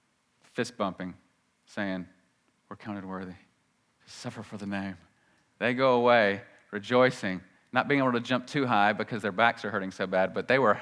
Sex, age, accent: male, 40-59, American